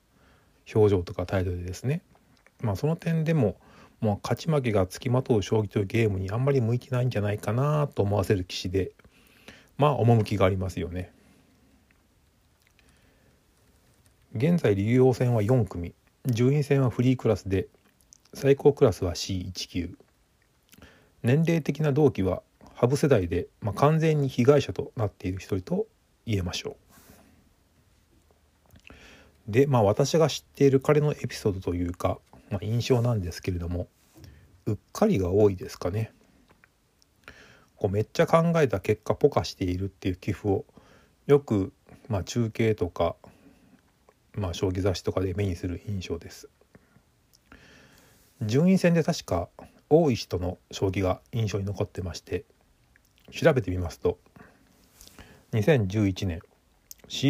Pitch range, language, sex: 95-135 Hz, Japanese, male